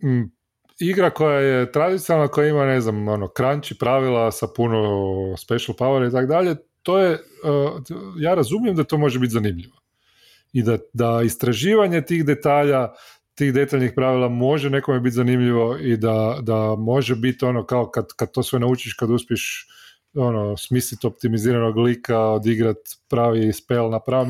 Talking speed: 155 wpm